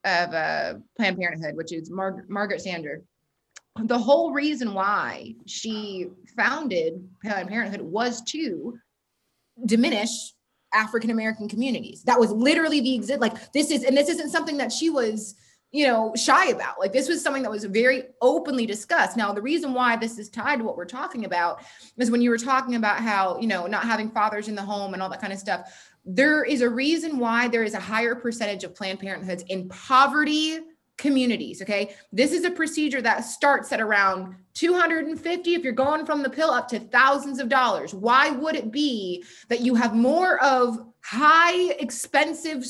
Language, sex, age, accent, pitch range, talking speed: English, female, 20-39, American, 215-290 Hz, 185 wpm